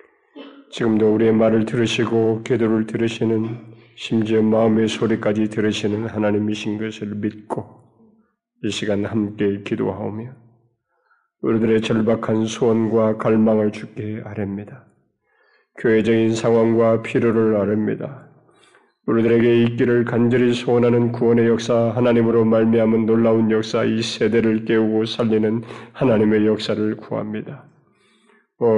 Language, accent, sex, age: Korean, native, male, 40-59